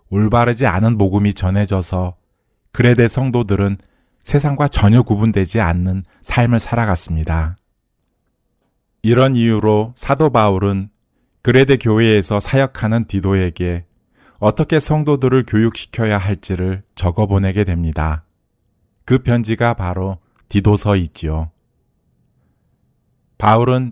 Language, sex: Korean, male